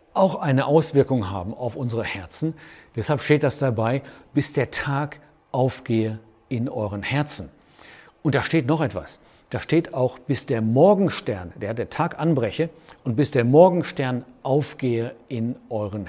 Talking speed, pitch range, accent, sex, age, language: 150 wpm, 105-140 Hz, German, male, 50-69, German